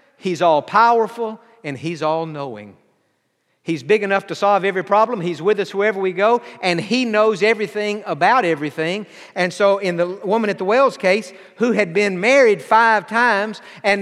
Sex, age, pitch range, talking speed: male, 50-69, 185-240 Hz, 170 wpm